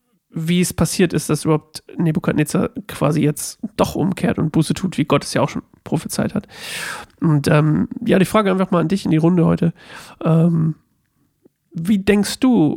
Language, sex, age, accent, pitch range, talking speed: German, male, 40-59, German, 155-185 Hz, 180 wpm